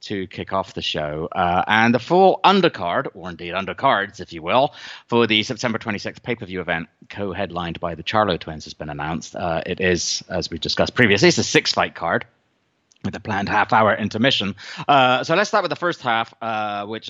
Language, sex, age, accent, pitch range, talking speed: English, male, 30-49, British, 90-120 Hz, 195 wpm